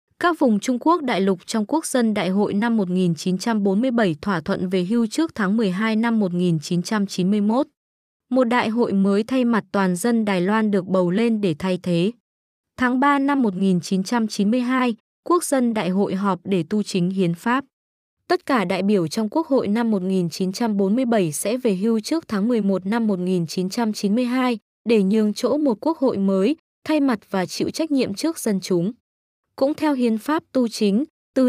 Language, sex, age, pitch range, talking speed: Vietnamese, female, 20-39, 190-245 Hz, 175 wpm